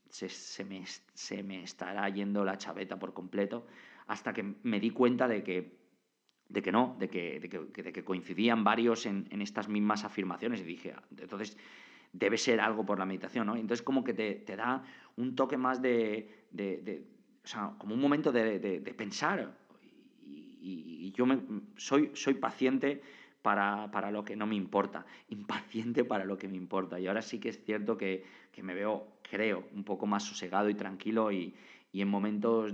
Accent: Spanish